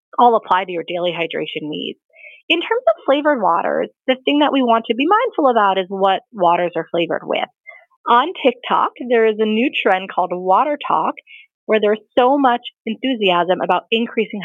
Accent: American